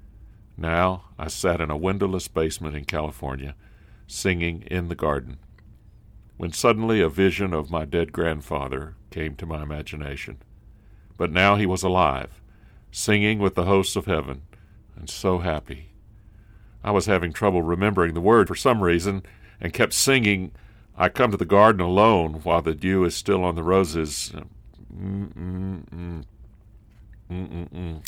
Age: 60-79